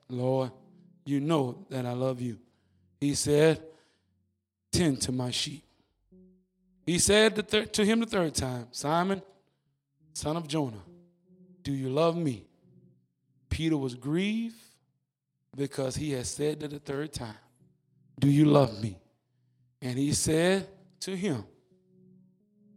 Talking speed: 125 wpm